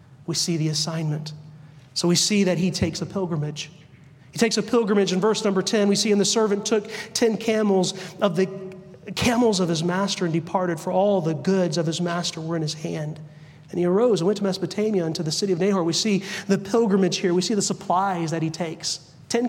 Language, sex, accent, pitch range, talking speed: English, male, American, 175-220 Hz, 225 wpm